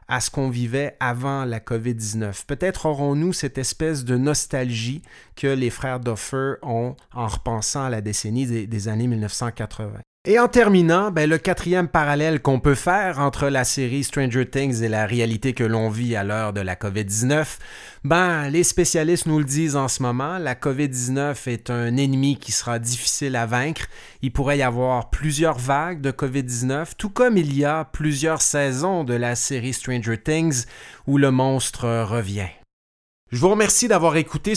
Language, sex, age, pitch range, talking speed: French, male, 30-49, 120-160 Hz, 175 wpm